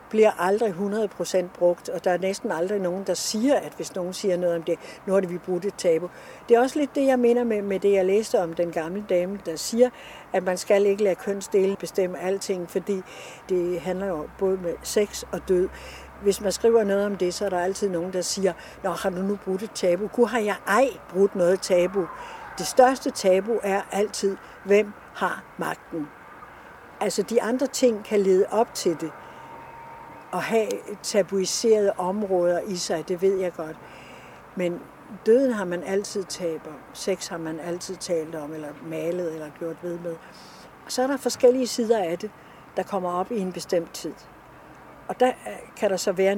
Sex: female